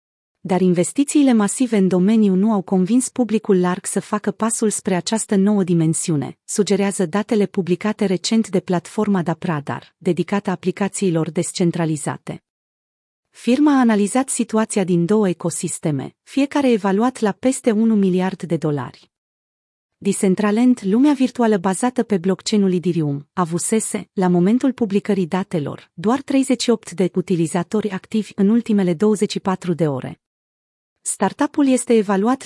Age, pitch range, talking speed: 30-49, 180-225 Hz, 125 wpm